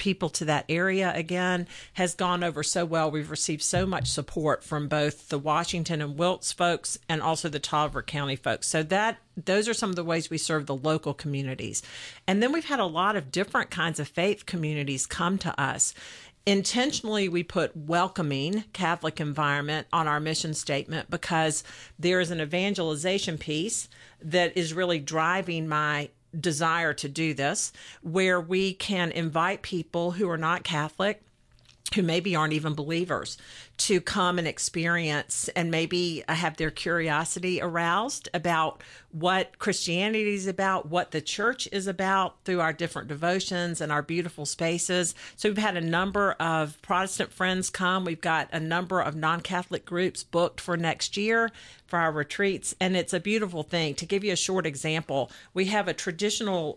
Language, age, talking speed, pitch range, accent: English, 50-69, 170 wpm, 155-185 Hz, American